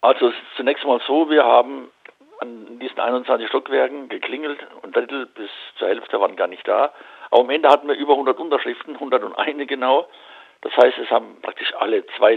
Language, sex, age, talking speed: German, male, 60-79, 190 wpm